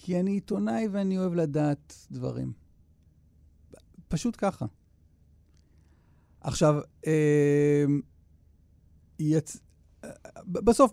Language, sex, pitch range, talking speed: Hebrew, male, 120-180 Hz, 70 wpm